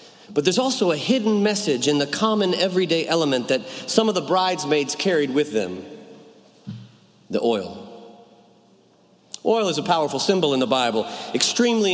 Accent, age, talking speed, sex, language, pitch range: American, 40-59, 150 wpm, male, English, 150-205 Hz